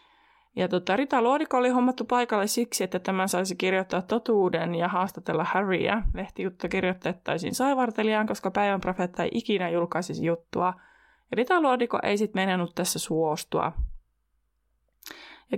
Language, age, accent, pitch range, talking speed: Finnish, 20-39, native, 180-230 Hz, 120 wpm